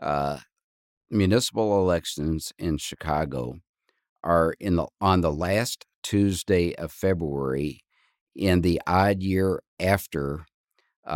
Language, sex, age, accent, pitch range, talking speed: English, male, 50-69, American, 75-95 Hz, 100 wpm